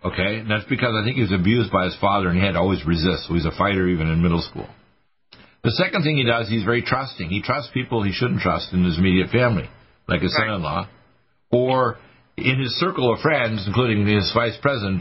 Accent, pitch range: American, 95-120 Hz